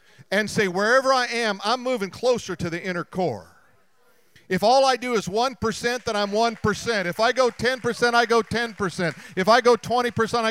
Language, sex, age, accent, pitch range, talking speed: English, male, 50-69, American, 155-215 Hz, 185 wpm